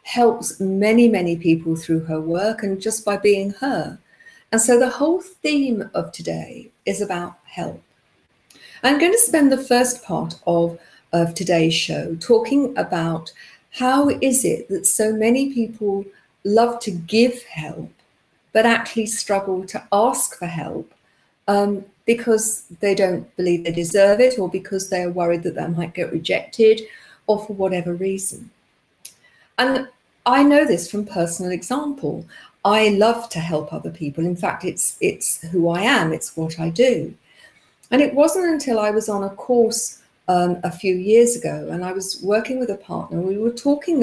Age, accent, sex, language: 50-69, British, female, English